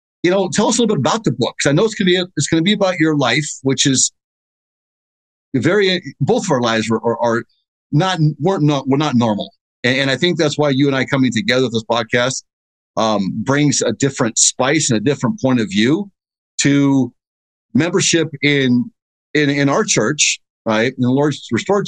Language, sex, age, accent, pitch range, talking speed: English, male, 50-69, American, 115-155 Hz, 220 wpm